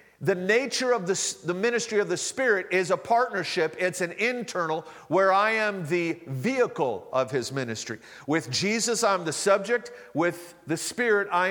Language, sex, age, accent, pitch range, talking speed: English, male, 50-69, American, 165-210 Hz, 165 wpm